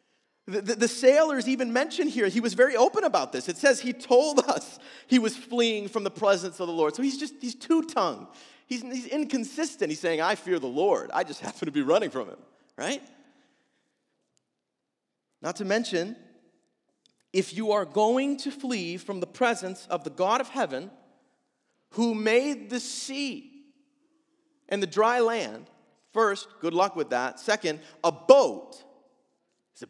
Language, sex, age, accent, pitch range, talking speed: English, male, 40-59, American, 200-280 Hz, 170 wpm